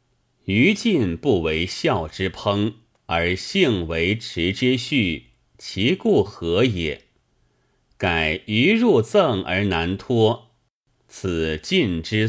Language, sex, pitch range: Chinese, male, 90-130 Hz